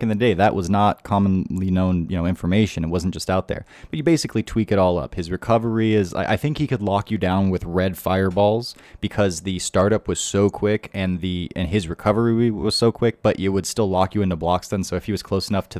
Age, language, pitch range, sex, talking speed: 20-39, English, 90-105 Hz, male, 250 wpm